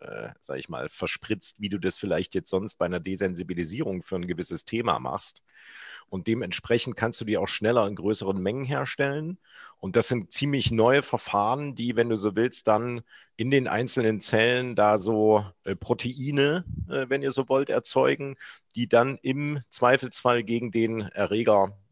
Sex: male